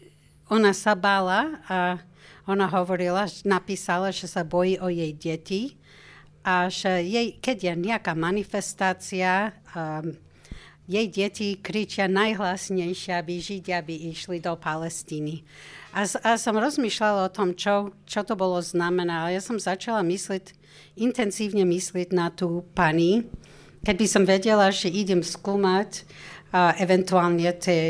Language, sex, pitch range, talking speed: Slovak, female, 165-195 Hz, 135 wpm